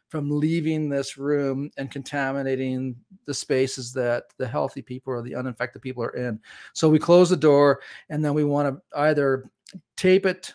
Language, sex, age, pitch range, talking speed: English, male, 40-59, 135-160 Hz, 175 wpm